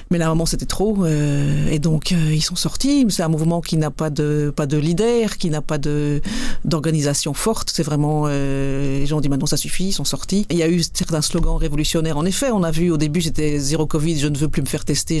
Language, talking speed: French, 260 wpm